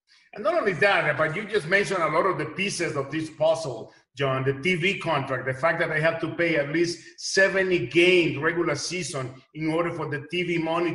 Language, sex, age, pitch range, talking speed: English, male, 50-69, 160-205 Hz, 215 wpm